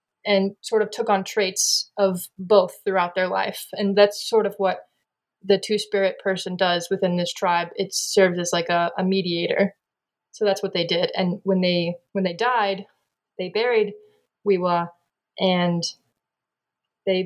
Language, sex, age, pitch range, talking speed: English, female, 20-39, 185-210 Hz, 160 wpm